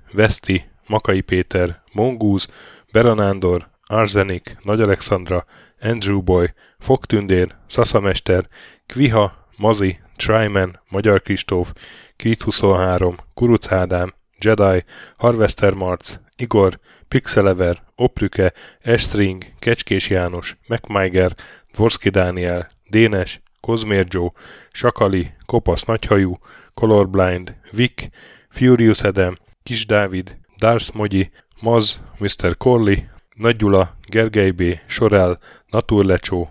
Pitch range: 90-110 Hz